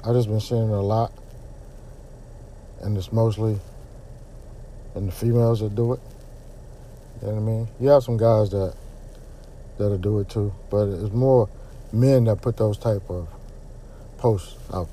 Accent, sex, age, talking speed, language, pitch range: American, male, 50-69, 165 wpm, English, 105-125 Hz